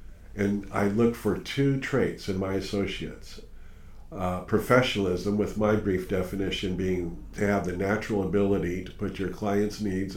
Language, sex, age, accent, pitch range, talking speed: English, male, 50-69, American, 90-105 Hz, 155 wpm